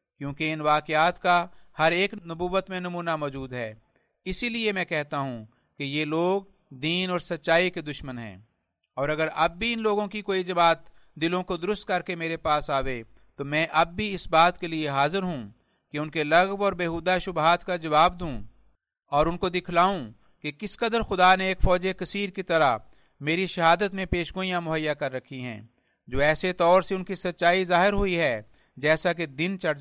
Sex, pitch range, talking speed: male, 150-180 Hz, 195 wpm